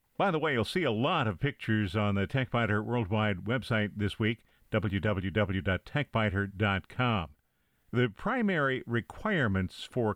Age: 50-69